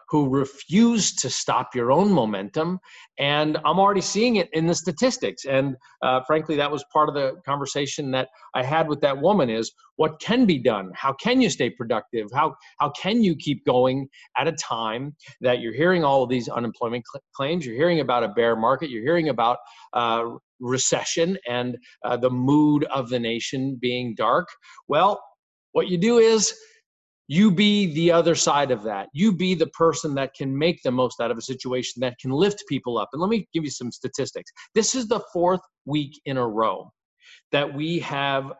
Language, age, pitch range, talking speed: English, 40-59, 130-175 Hz, 195 wpm